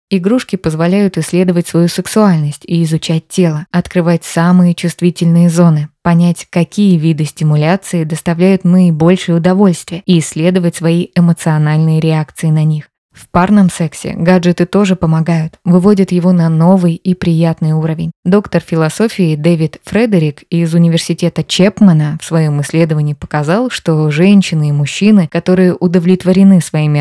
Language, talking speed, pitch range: Russian, 125 wpm, 160-185 Hz